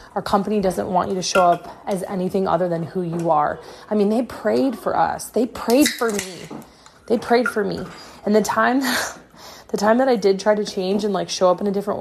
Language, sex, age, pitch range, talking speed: English, female, 20-39, 180-220 Hz, 235 wpm